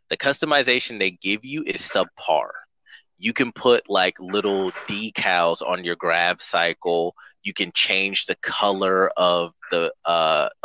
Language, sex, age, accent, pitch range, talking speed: English, male, 20-39, American, 100-155 Hz, 140 wpm